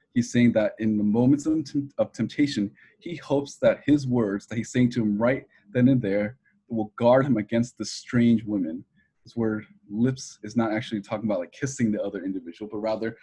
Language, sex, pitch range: English, male, 110-125 Hz